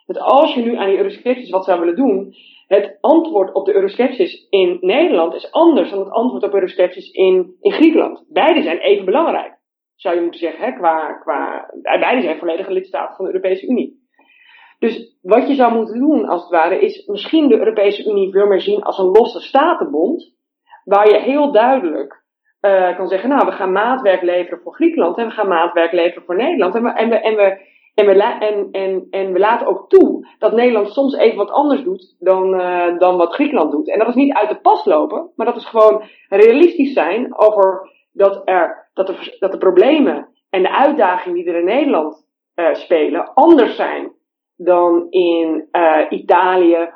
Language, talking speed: Dutch, 190 wpm